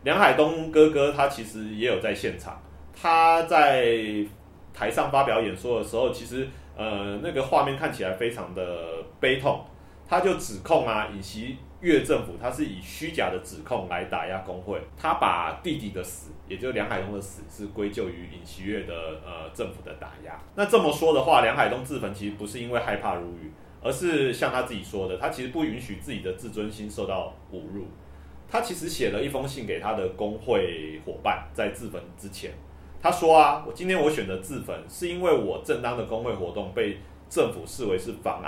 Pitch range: 85-120 Hz